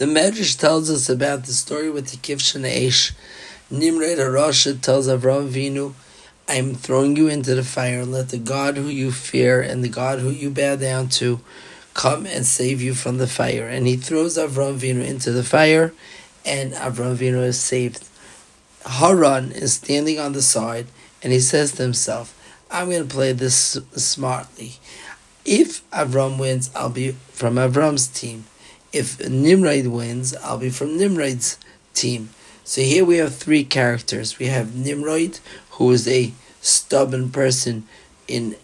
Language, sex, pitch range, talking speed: English, male, 125-140 Hz, 160 wpm